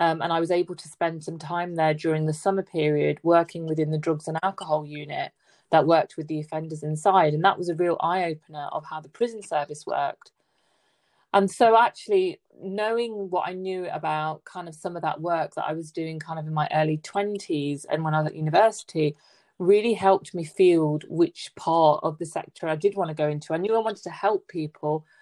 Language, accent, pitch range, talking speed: English, British, 155-180 Hz, 220 wpm